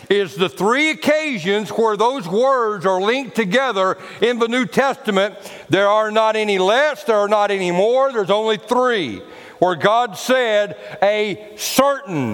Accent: American